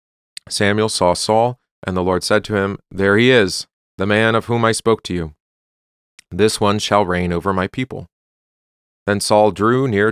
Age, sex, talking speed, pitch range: 40-59, male, 185 wpm, 90-115 Hz